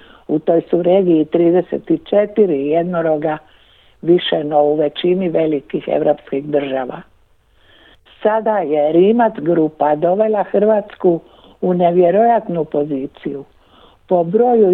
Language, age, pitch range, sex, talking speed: Croatian, 60-79, 155-195 Hz, female, 100 wpm